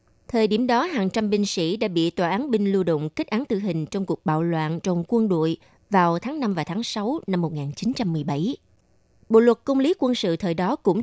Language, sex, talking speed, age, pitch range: Vietnamese, female, 230 wpm, 20-39, 175-235 Hz